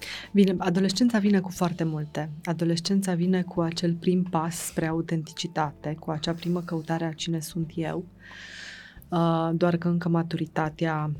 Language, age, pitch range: Romanian, 20-39, 160-185 Hz